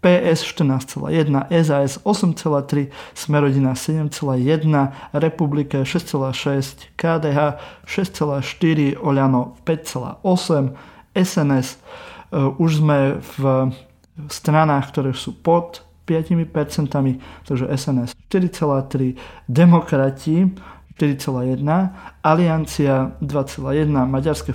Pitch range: 135-160 Hz